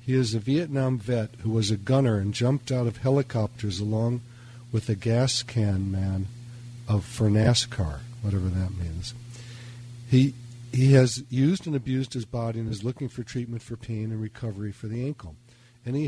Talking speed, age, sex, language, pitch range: 175 wpm, 50-69, male, English, 110-125 Hz